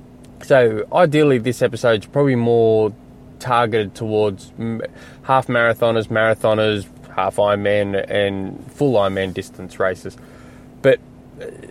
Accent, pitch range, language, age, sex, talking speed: Australian, 105-130 Hz, English, 20-39, male, 95 wpm